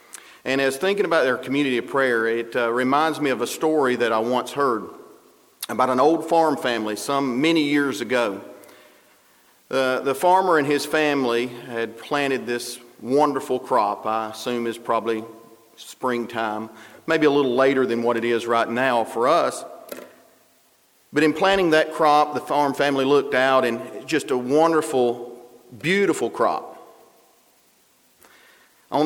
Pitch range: 115-145 Hz